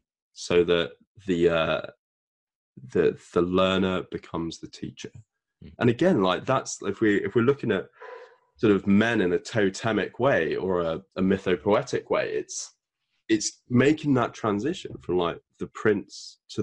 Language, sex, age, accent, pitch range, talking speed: English, male, 20-39, British, 90-120 Hz, 150 wpm